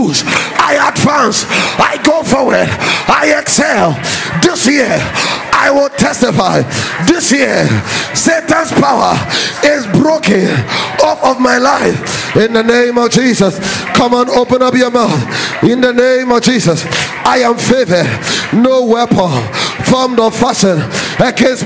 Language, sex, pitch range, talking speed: English, male, 190-265 Hz, 130 wpm